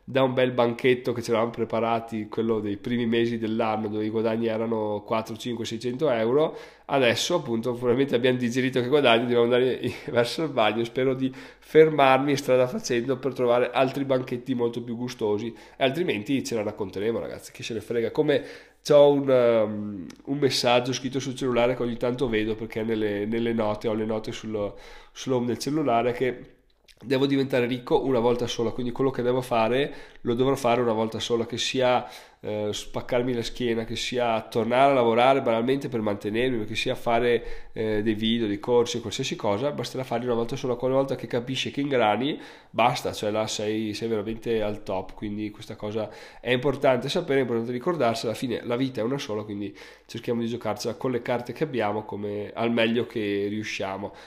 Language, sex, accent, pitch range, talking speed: Italian, male, native, 110-130 Hz, 190 wpm